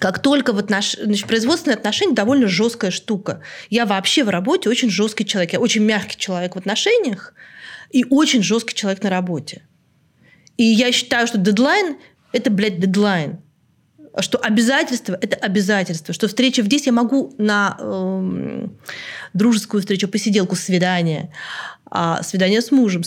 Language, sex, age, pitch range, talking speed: Russian, female, 30-49, 185-235 Hz, 145 wpm